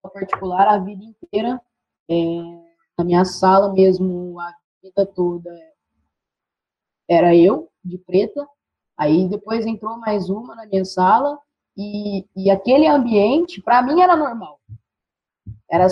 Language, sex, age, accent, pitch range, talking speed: Portuguese, female, 20-39, Brazilian, 175-215 Hz, 125 wpm